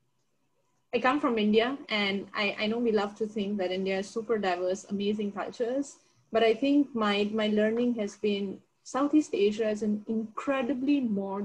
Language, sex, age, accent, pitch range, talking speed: English, female, 30-49, Indian, 200-240 Hz, 175 wpm